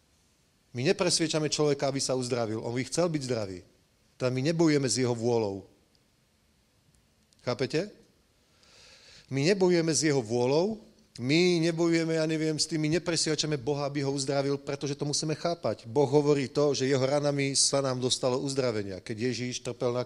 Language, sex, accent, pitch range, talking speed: English, male, Czech, 120-145 Hz, 155 wpm